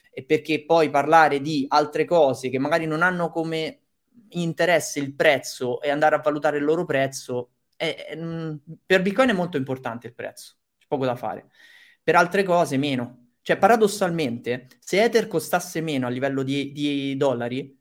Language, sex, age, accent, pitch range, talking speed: Italian, male, 20-39, native, 135-165 Hz, 160 wpm